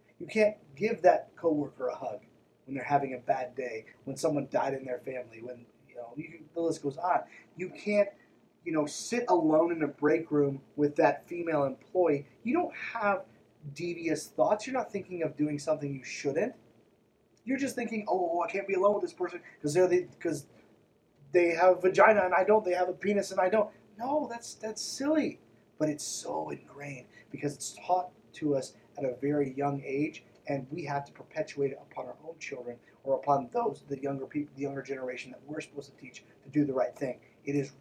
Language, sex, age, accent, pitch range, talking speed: English, male, 30-49, American, 135-175 Hz, 210 wpm